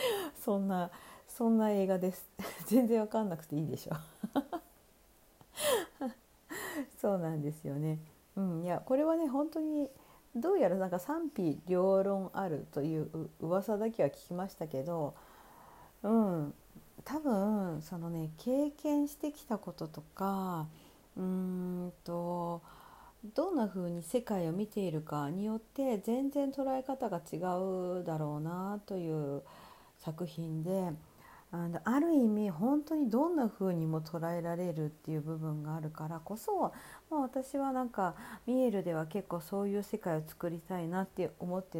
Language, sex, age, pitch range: Japanese, female, 40-59, 160-245 Hz